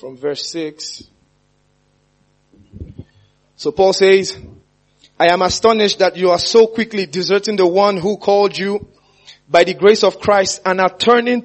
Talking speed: 145 wpm